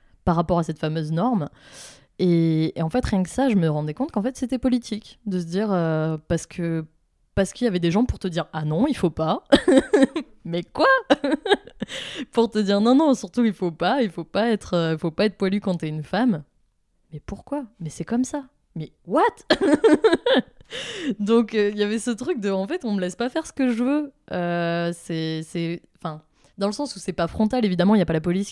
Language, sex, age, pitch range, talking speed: French, female, 20-39, 165-230 Hz, 240 wpm